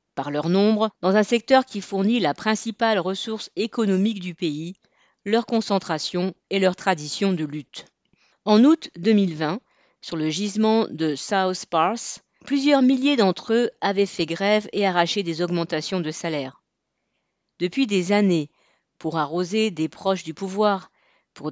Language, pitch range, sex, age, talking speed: French, 170-220 Hz, female, 40-59, 150 wpm